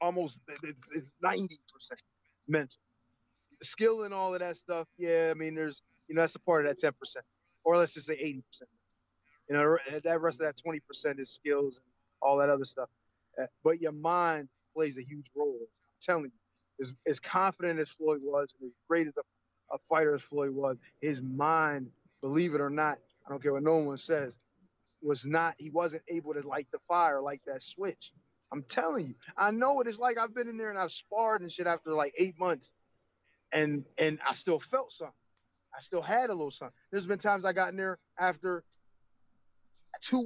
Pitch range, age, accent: 140-180 Hz, 20-39, American